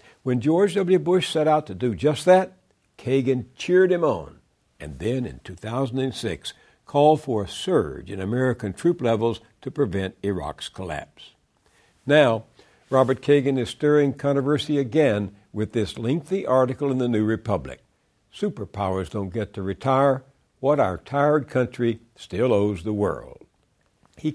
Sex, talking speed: male, 145 wpm